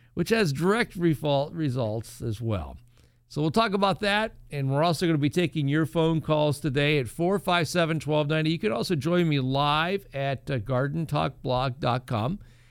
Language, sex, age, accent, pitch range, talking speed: English, male, 50-69, American, 130-170 Hz, 155 wpm